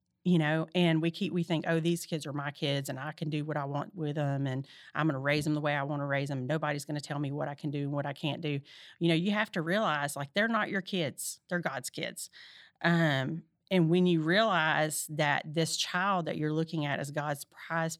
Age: 40-59